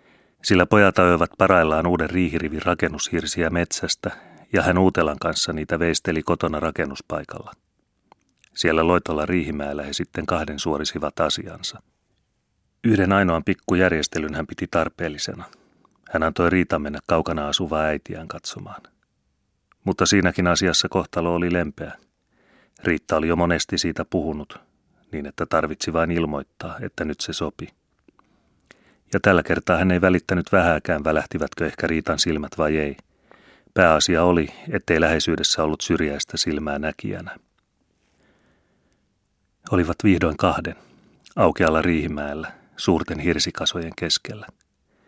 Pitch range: 75-90 Hz